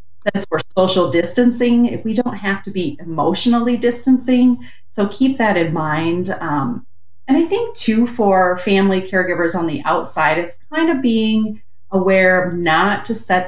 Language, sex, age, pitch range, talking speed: English, female, 30-49, 160-200 Hz, 160 wpm